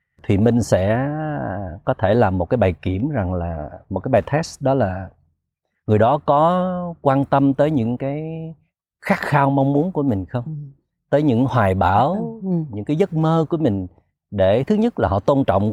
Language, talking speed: Vietnamese, 190 wpm